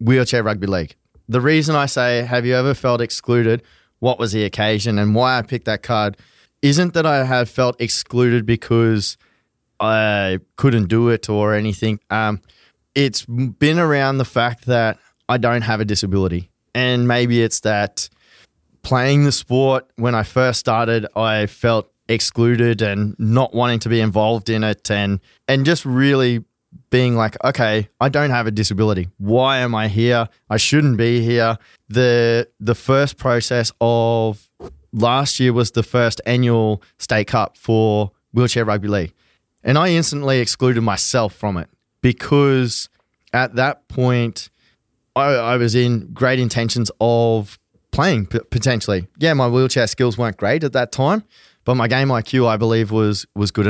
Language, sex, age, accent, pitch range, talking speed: English, male, 20-39, Australian, 110-125 Hz, 160 wpm